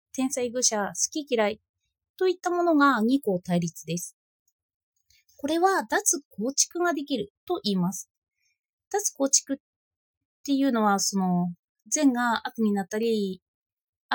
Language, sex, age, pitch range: Japanese, female, 20-39, 195-290 Hz